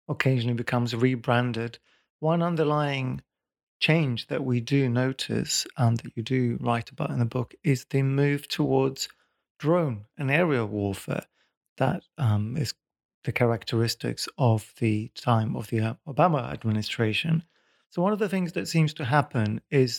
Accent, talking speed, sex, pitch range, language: British, 145 wpm, male, 120-150 Hz, English